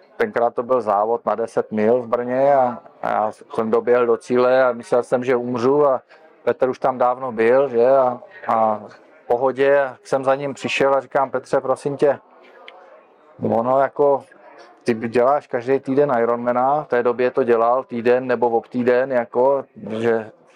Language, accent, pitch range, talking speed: Czech, native, 120-140 Hz, 170 wpm